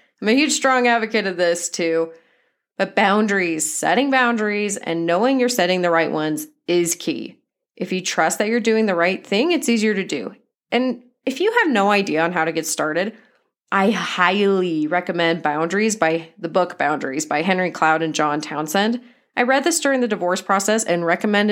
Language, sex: English, female